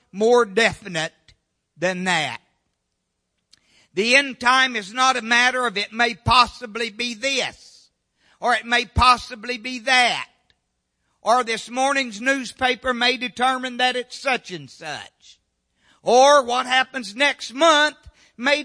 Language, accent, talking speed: English, American, 130 wpm